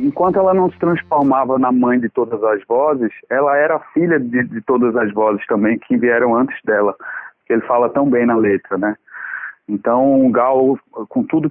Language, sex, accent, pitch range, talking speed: Portuguese, male, Brazilian, 120-170 Hz, 180 wpm